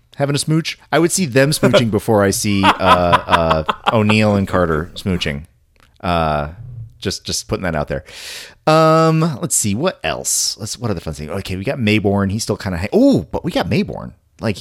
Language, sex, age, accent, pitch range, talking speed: English, male, 30-49, American, 95-120 Hz, 205 wpm